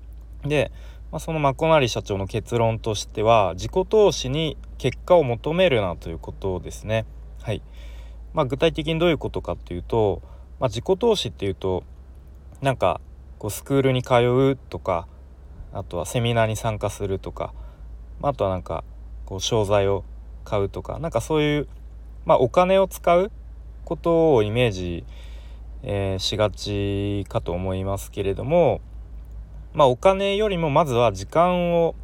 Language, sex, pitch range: Japanese, male, 85-135 Hz